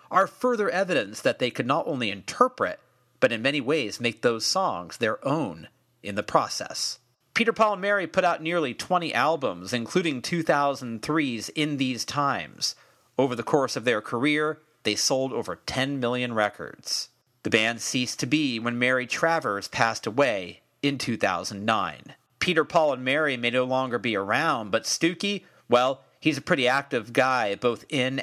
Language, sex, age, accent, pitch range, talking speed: English, male, 40-59, American, 120-150 Hz, 165 wpm